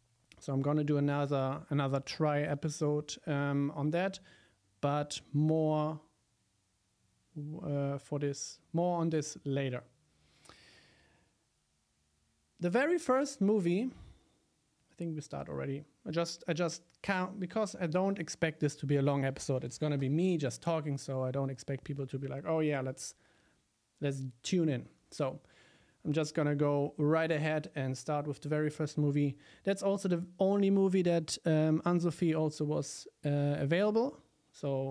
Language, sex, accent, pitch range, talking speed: German, male, German, 140-175 Hz, 155 wpm